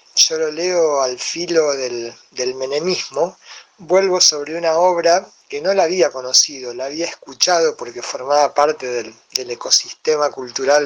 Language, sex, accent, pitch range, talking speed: Spanish, male, Argentinian, 135-180 Hz, 150 wpm